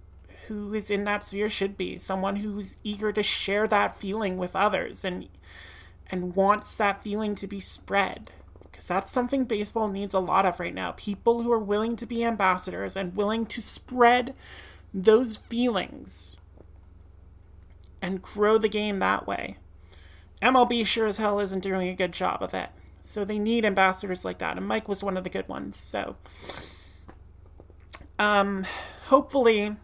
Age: 30-49